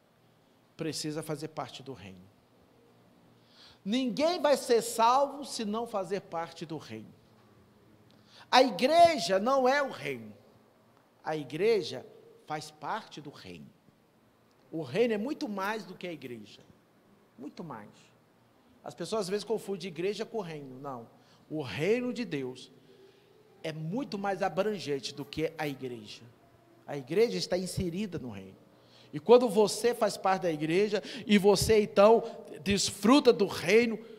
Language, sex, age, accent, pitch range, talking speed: Portuguese, male, 50-69, Brazilian, 140-225 Hz, 140 wpm